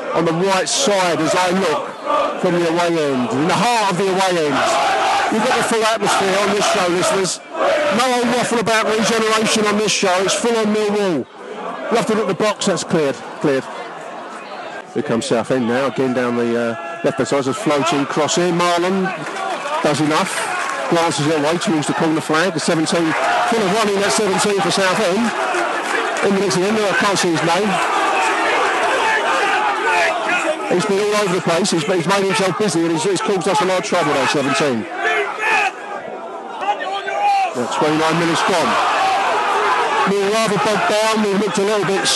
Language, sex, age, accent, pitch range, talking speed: English, male, 50-69, British, 165-210 Hz, 185 wpm